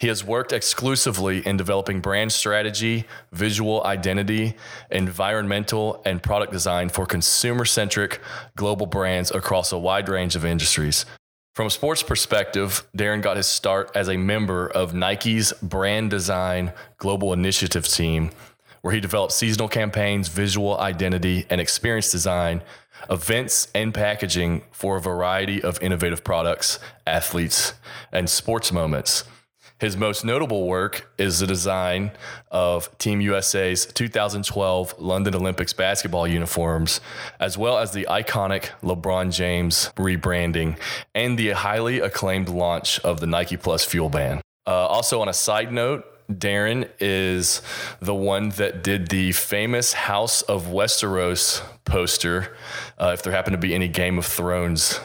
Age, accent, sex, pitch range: 20-39, American, male, 90-105 Hz